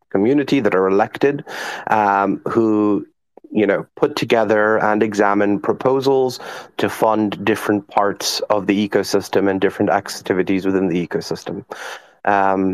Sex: male